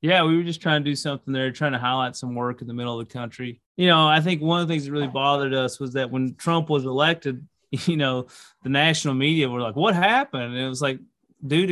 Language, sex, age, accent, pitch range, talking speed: English, male, 30-49, American, 130-155 Hz, 265 wpm